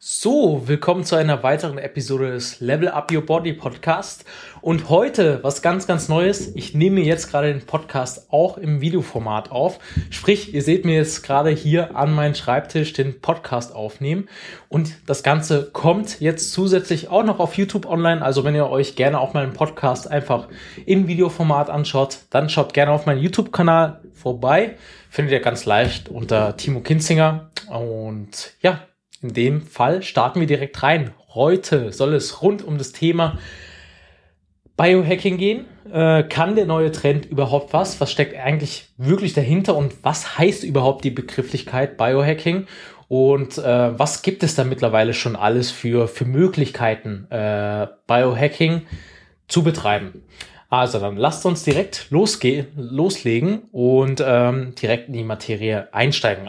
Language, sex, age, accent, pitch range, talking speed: German, male, 20-39, German, 125-165 Hz, 155 wpm